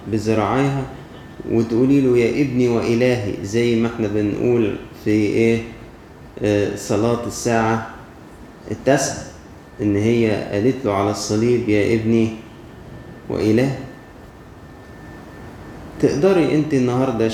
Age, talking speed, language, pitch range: 20-39, 95 wpm, Arabic, 100-120 Hz